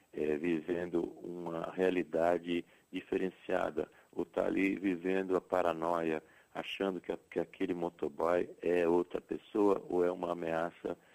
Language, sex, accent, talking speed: Portuguese, male, Brazilian, 120 wpm